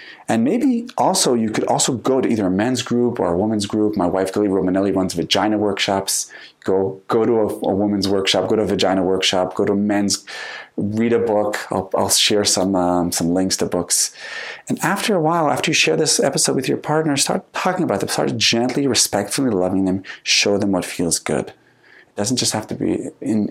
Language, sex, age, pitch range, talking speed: English, male, 30-49, 95-115 Hz, 215 wpm